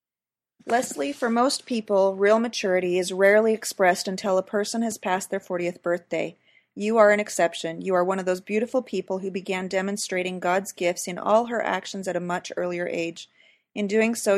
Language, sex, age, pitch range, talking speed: English, female, 40-59, 180-210 Hz, 190 wpm